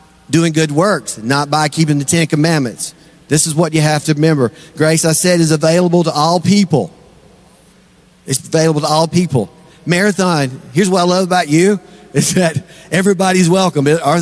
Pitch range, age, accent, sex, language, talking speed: 155-190 Hz, 40-59, American, male, English, 175 wpm